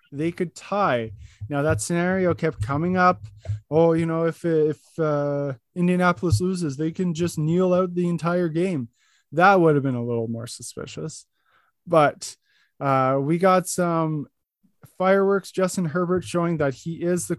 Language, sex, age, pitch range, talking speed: English, male, 20-39, 140-180 Hz, 160 wpm